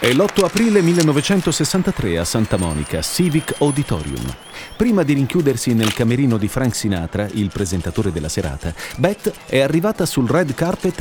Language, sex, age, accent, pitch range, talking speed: Italian, male, 40-59, native, 110-165 Hz, 145 wpm